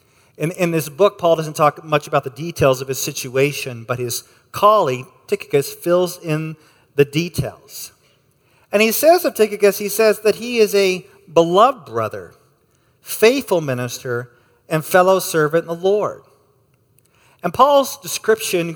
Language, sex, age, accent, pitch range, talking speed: English, male, 40-59, American, 130-175 Hz, 145 wpm